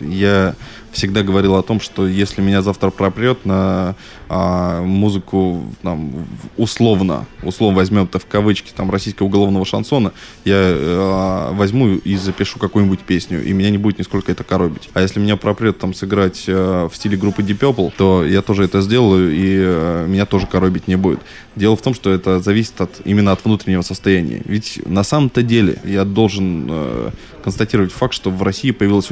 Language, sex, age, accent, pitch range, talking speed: Russian, male, 20-39, native, 95-105 Hz, 165 wpm